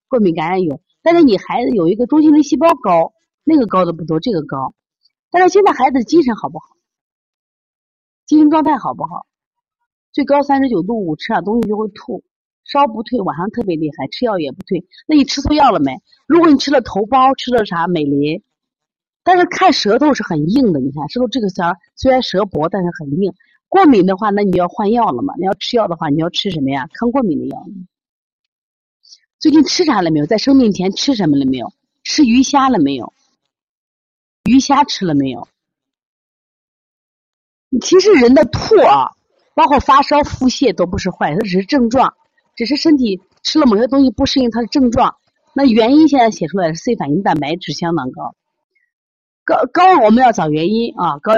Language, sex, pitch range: Chinese, female, 190-290 Hz